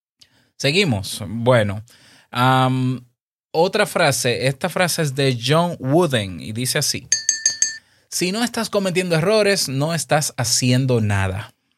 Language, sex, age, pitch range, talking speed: Spanish, male, 20-39, 115-155 Hz, 110 wpm